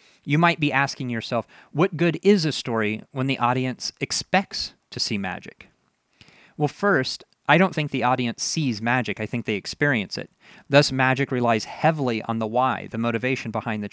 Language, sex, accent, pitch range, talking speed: English, male, American, 120-145 Hz, 180 wpm